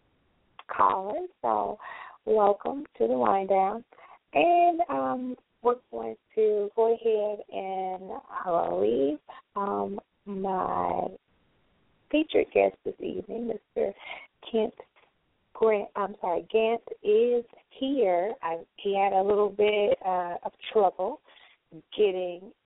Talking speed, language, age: 105 wpm, English, 20-39